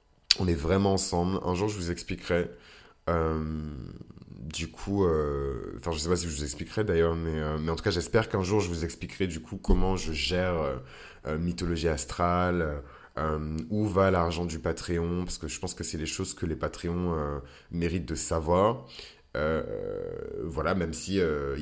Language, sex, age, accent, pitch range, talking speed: French, male, 20-39, French, 80-95 Hz, 190 wpm